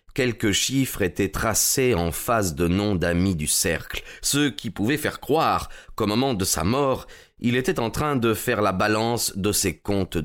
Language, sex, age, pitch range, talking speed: French, male, 30-49, 90-120 Hz, 185 wpm